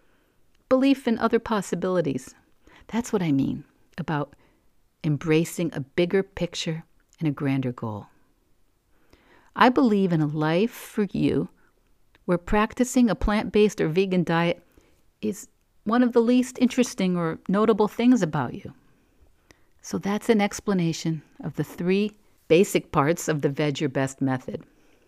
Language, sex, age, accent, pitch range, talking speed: English, female, 50-69, American, 155-220 Hz, 135 wpm